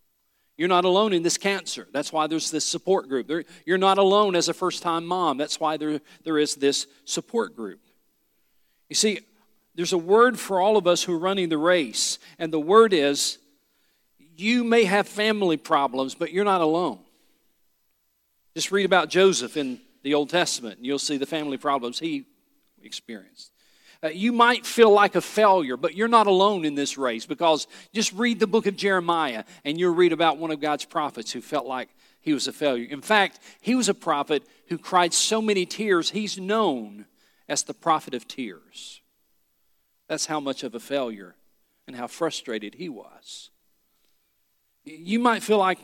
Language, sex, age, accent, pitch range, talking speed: English, male, 40-59, American, 150-200 Hz, 180 wpm